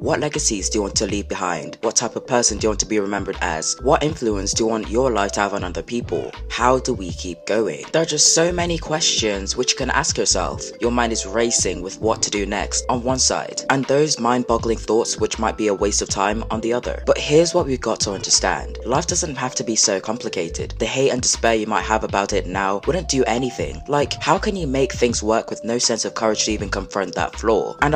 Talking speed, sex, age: 255 wpm, female, 20-39